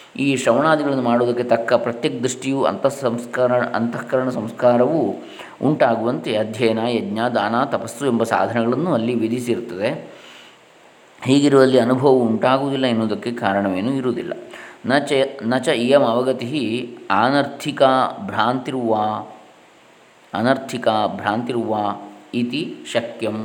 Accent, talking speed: native, 85 wpm